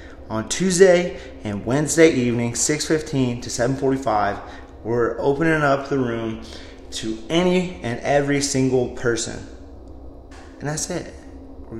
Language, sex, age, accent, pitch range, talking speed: English, male, 20-39, American, 90-135 Hz, 115 wpm